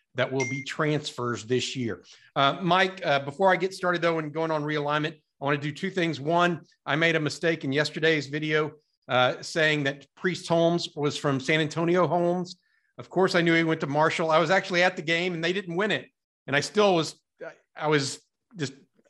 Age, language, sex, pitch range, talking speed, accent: 50-69, English, male, 135-170 Hz, 215 wpm, American